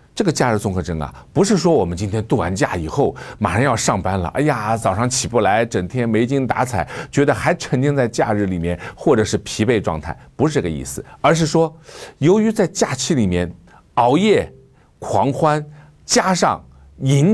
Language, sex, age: Chinese, male, 50-69